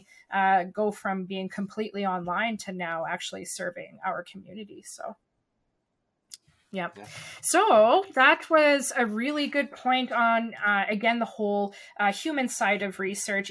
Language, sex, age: English, female, 20-39